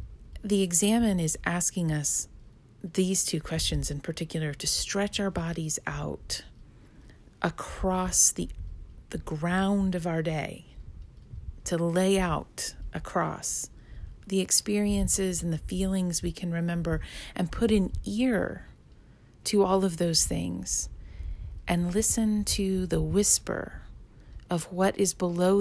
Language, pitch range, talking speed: English, 150-190 Hz, 120 wpm